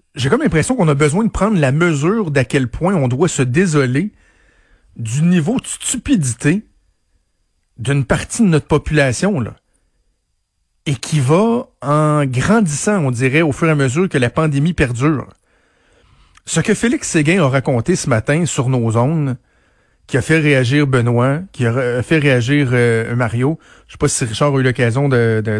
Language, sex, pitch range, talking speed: French, male, 125-165 Hz, 180 wpm